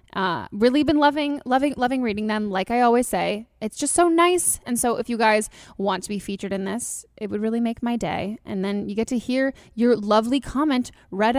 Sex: female